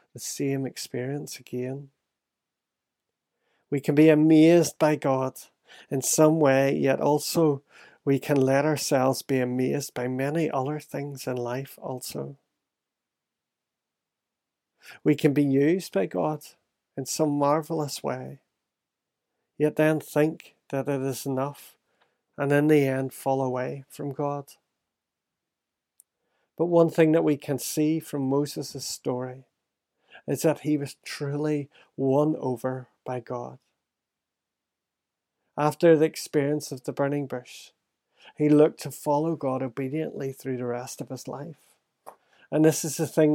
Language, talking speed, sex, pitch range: English, 135 wpm, male, 130-150 Hz